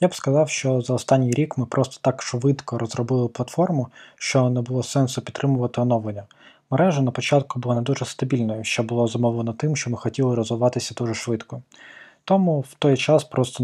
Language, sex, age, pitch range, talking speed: Ukrainian, male, 20-39, 120-140 Hz, 180 wpm